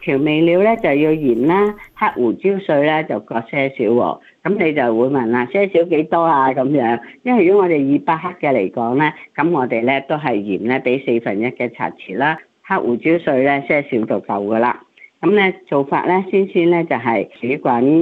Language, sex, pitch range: Chinese, female, 120-160 Hz